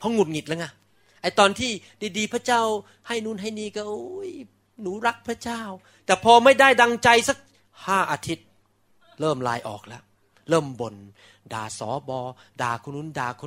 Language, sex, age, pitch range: Thai, male, 30-49, 115-185 Hz